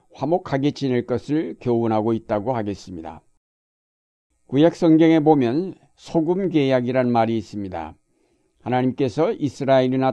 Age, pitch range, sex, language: 60-79, 120-145 Hz, male, Korean